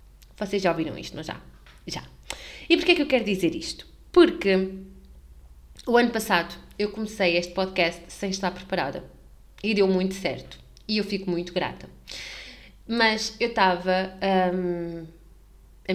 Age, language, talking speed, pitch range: 20-39, Portuguese, 145 wpm, 170-205 Hz